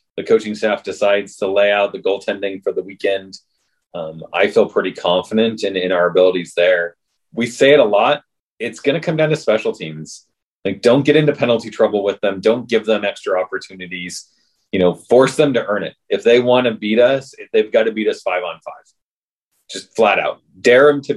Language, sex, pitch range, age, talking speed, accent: English, male, 100-135 Hz, 30-49, 215 wpm, American